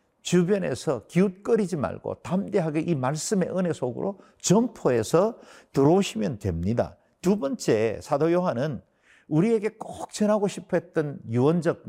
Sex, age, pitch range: male, 50-69, 115-175 Hz